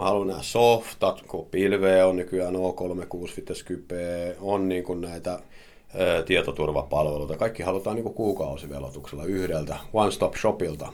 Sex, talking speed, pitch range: male, 115 wpm, 80-100 Hz